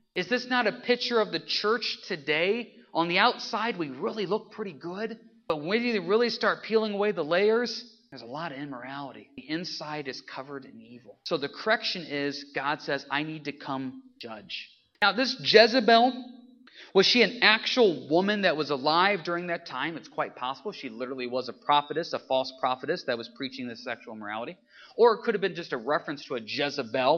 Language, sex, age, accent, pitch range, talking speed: English, male, 30-49, American, 135-225 Hz, 200 wpm